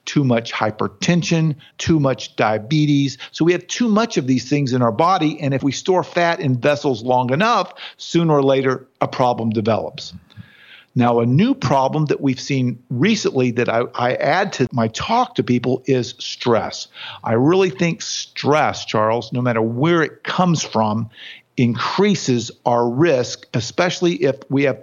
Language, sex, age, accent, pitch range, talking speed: English, male, 50-69, American, 120-155 Hz, 165 wpm